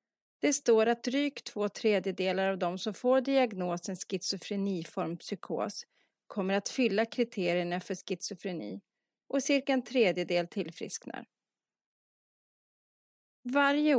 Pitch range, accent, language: 185-250 Hz, native, Swedish